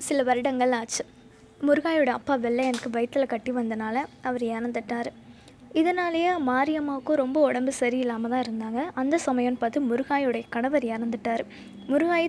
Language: Tamil